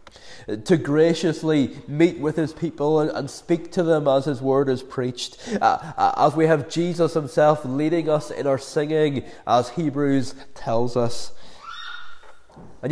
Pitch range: 130-170 Hz